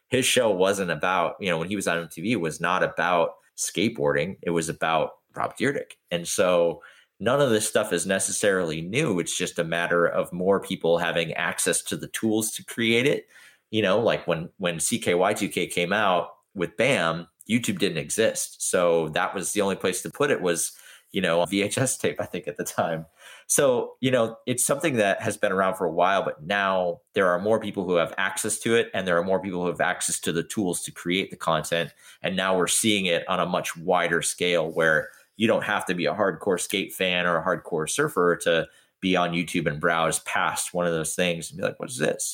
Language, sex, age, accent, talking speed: English, male, 30-49, American, 220 wpm